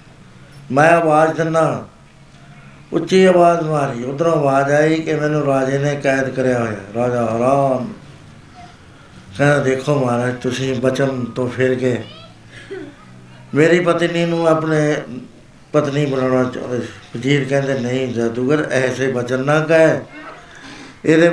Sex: male